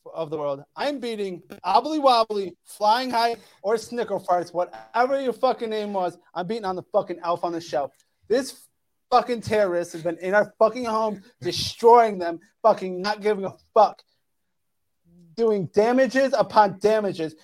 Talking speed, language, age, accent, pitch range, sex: 155 wpm, English, 30-49, American, 170-220 Hz, male